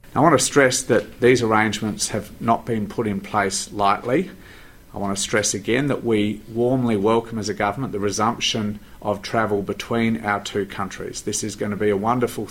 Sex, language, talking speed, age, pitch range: male, Greek, 195 wpm, 40-59, 105-135 Hz